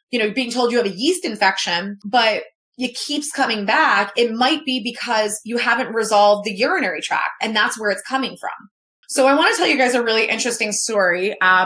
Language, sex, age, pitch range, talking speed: English, female, 20-39, 195-250 Hz, 215 wpm